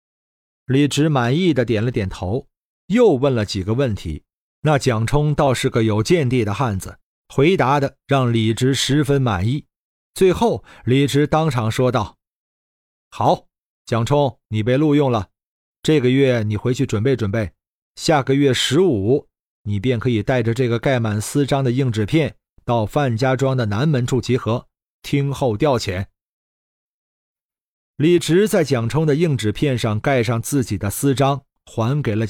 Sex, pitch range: male, 110-145 Hz